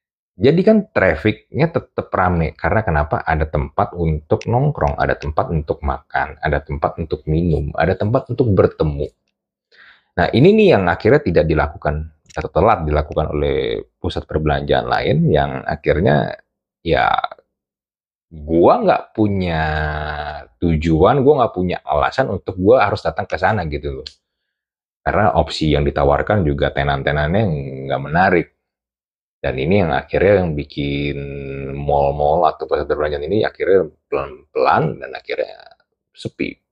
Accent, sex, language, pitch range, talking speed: native, male, Indonesian, 75-105 Hz, 130 wpm